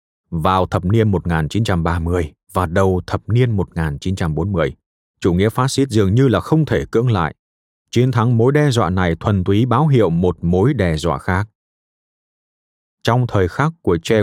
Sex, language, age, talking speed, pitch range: male, Vietnamese, 20-39, 170 wpm, 85-120 Hz